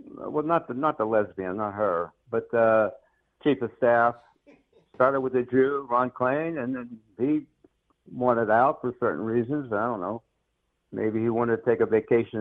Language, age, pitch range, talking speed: English, 60-79, 120-155 Hz, 180 wpm